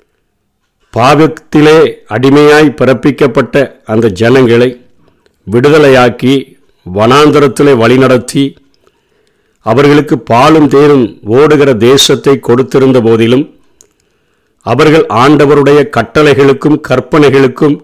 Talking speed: 65 wpm